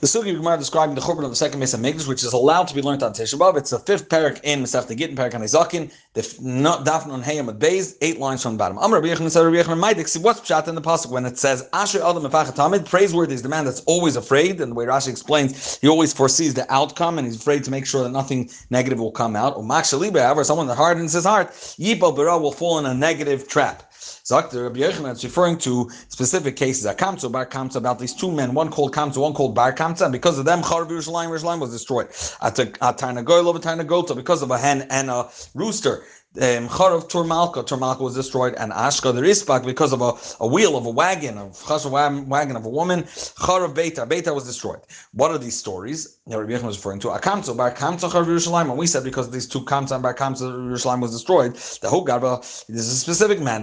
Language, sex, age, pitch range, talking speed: English, male, 30-49, 125-165 Hz, 235 wpm